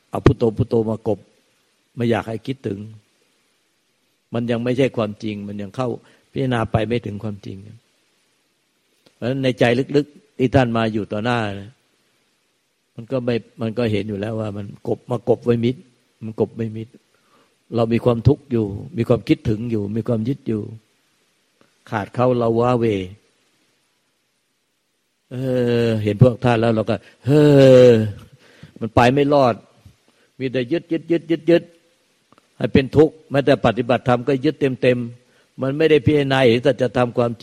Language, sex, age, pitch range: Thai, male, 60-79, 115-135 Hz